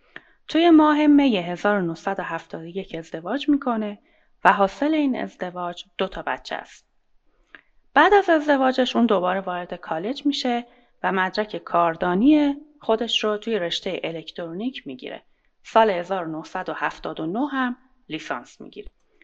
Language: Persian